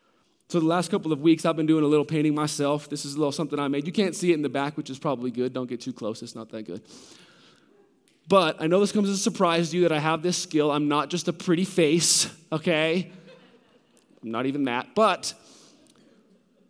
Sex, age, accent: male, 20-39, American